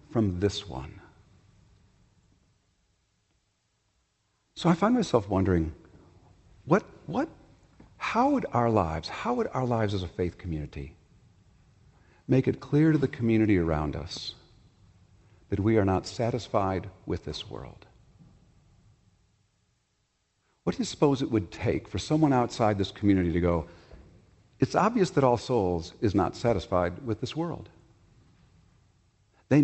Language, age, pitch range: English, 50-69, 90-115 Hz